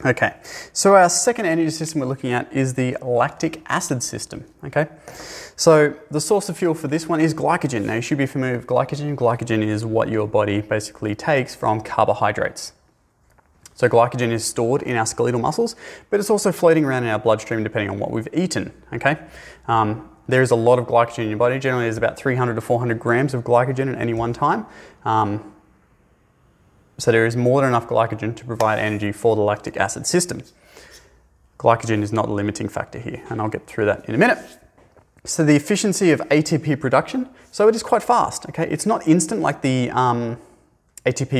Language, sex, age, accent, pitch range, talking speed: English, male, 20-39, Australian, 110-155 Hz, 195 wpm